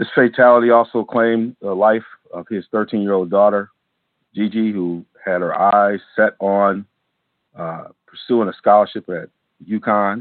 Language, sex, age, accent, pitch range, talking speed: English, male, 40-59, American, 90-105 Hz, 135 wpm